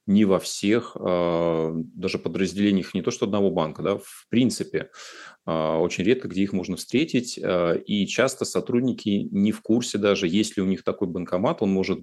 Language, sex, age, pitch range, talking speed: Russian, male, 30-49, 90-125 Hz, 165 wpm